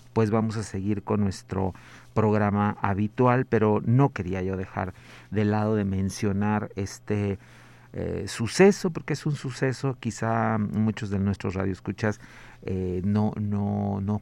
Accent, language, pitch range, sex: Mexican, Spanish, 100-115 Hz, male